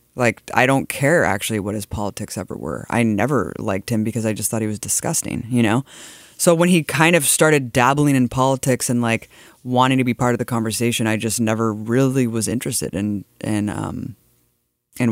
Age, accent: 20-39, American